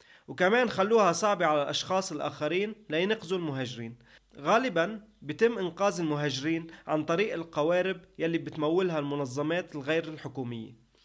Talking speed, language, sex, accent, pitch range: 110 wpm, English, male, Lebanese, 145-195 Hz